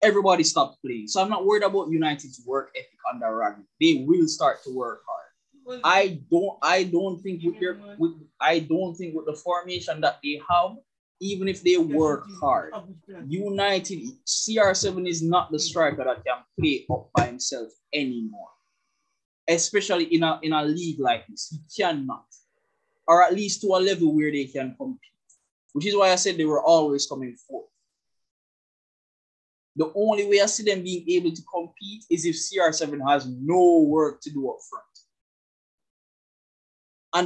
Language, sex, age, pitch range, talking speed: English, male, 20-39, 155-210 Hz, 170 wpm